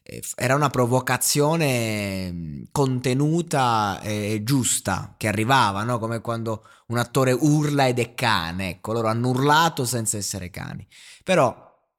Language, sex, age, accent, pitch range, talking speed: Italian, male, 20-39, native, 100-130 Hz, 125 wpm